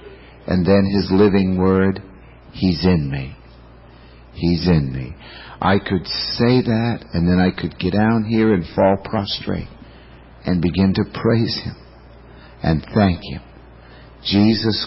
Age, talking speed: 60-79, 135 wpm